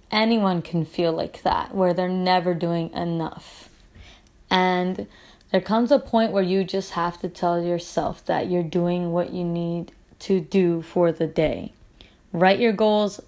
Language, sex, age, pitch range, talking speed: English, female, 20-39, 175-205 Hz, 165 wpm